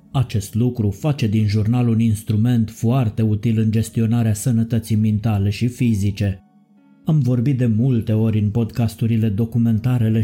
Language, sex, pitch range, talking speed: Romanian, male, 110-125 Hz, 135 wpm